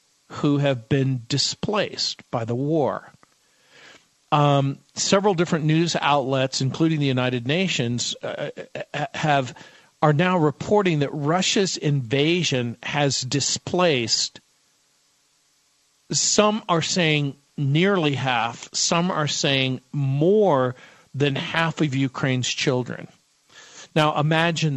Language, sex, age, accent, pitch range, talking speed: English, male, 50-69, American, 135-165 Hz, 105 wpm